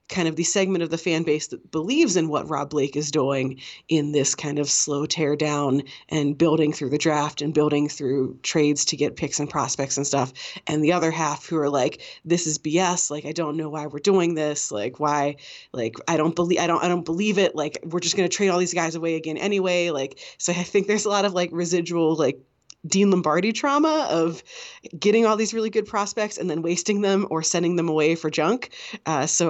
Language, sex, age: English, female, 30-49